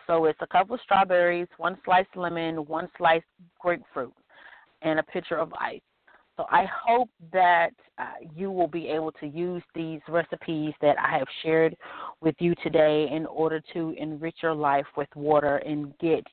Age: 30-49